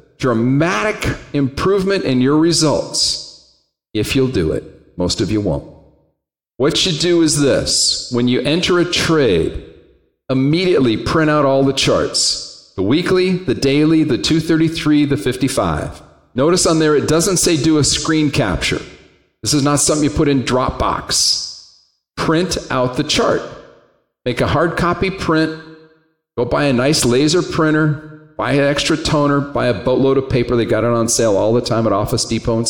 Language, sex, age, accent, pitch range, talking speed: English, male, 40-59, American, 130-160 Hz, 165 wpm